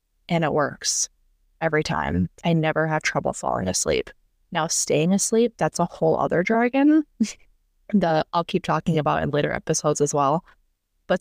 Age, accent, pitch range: 20-39, American, 150-185 Hz